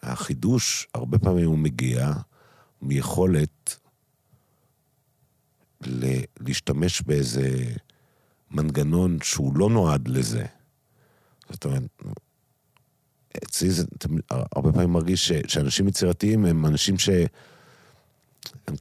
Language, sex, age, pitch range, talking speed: Hebrew, male, 50-69, 75-100 Hz, 90 wpm